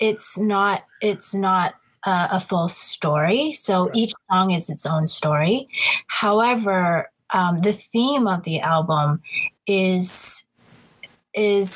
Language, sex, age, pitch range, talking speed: English, female, 20-39, 165-205 Hz, 120 wpm